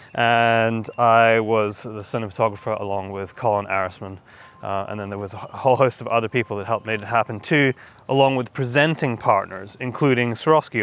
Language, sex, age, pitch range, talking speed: English, male, 20-39, 110-140 Hz, 175 wpm